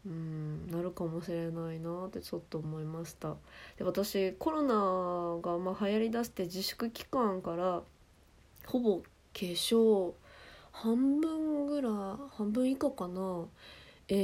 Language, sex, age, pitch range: Japanese, female, 20-39, 175-235 Hz